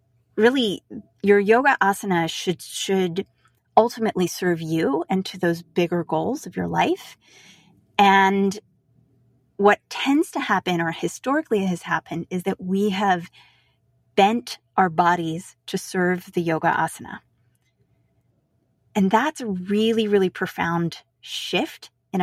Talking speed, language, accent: 125 wpm, English, American